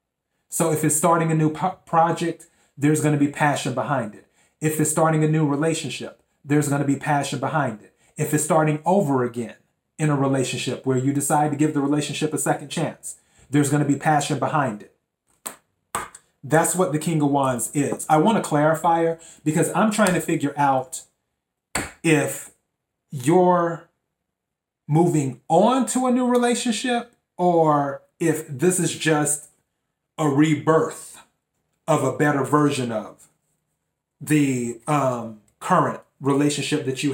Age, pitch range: 30-49, 140-160 Hz